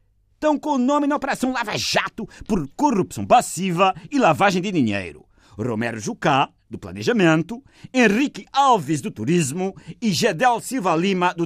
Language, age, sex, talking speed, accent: Portuguese, 50-69, male, 145 wpm, Brazilian